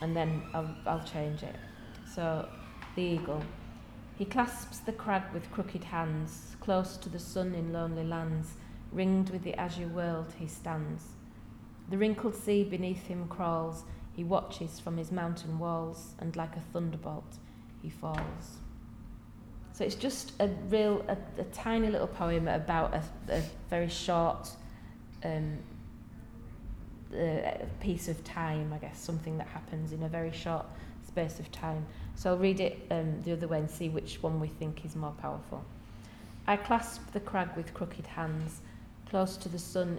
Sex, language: female, English